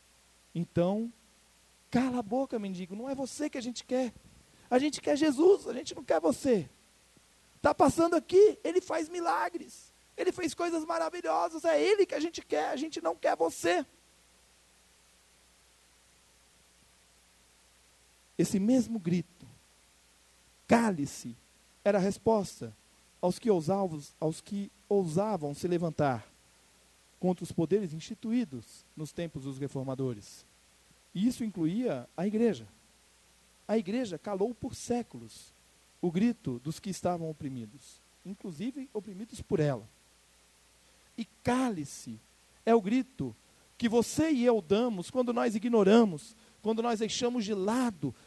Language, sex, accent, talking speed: Portuguese, male, Brazilian, 125 wpm